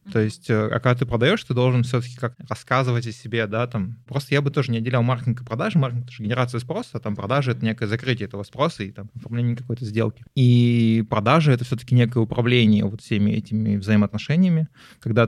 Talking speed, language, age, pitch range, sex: 205 wpm, Russian, 20-39, 110-130 Hz, male